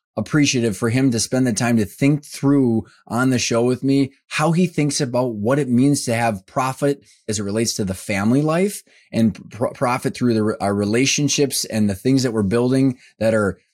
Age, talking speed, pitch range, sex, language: 20-39, 195 wpm, 105-130 Hz, male, English